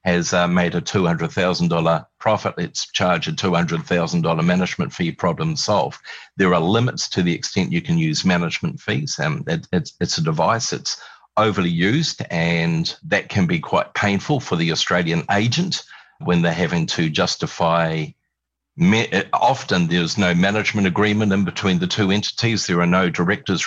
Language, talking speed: English, 155 wpm